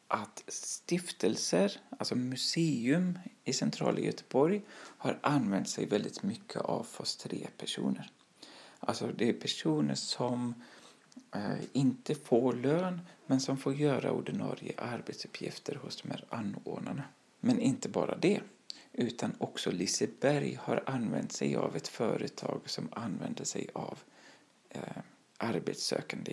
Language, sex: Swedish, male